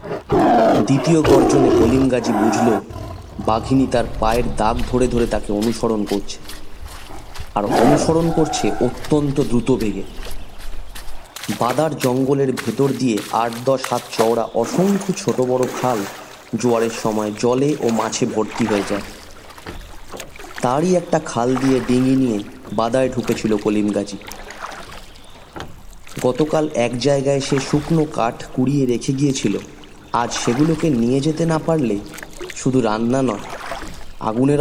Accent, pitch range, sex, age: native, 110-135 Hz, male, 30-49